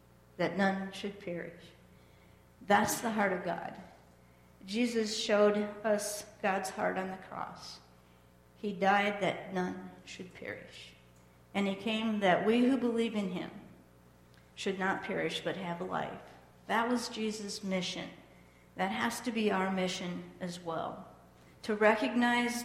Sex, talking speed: female, 140 wpm